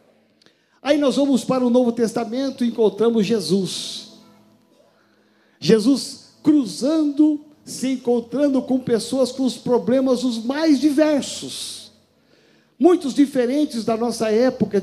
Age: 50-69